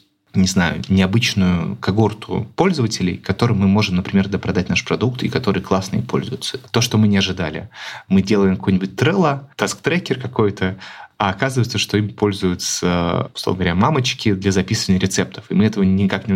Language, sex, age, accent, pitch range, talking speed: Russian, male, 20-39, native, 95-110 Hz, 160 wpm